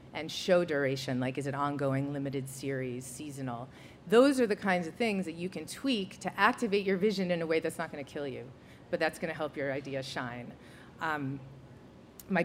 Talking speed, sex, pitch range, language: 205 wpm, female, 145-200 Hz, English